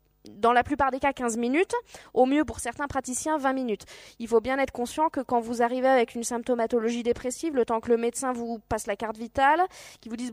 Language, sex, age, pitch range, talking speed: French, female, 20-39, 225-275 Hz, 230 wpm